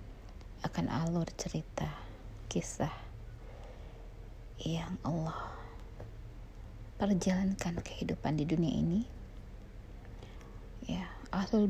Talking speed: 65 wpm